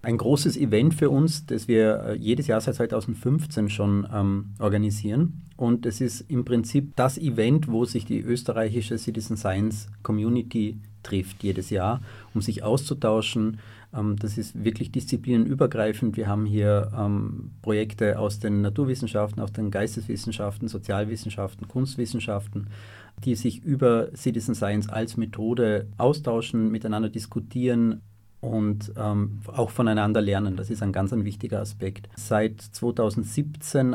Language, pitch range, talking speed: German, 105-120 Hz, 135 wpm